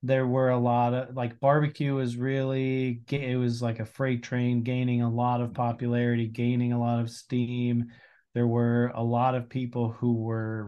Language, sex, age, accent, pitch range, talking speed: English, male, 30-49, American, 115-130 Hz, 185 wpm